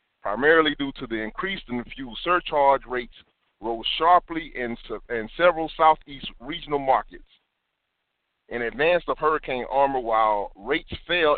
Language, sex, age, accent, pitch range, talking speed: English, male, 40-59, American, 115-145 Hz, 130 wpm